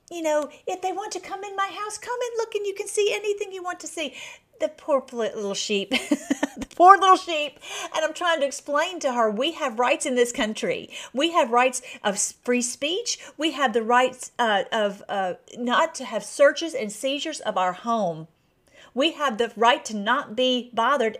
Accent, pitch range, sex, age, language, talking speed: American, 205-290 Hz, female, 40-59, English, 205 wpm